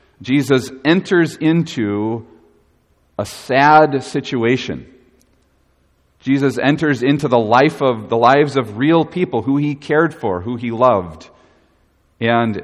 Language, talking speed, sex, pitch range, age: English, 120 wpm, male, 95-135 Hz, 40-59